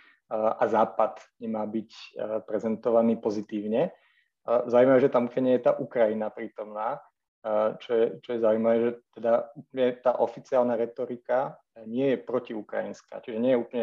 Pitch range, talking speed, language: 105-115 Hz, 145 wpm, Slovak